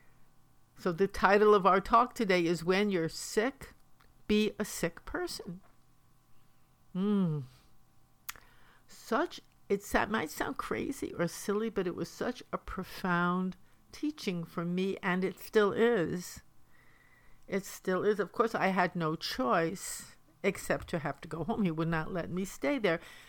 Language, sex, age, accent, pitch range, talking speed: English, female, 60-79, American, 170-205 Hz, 150 wpm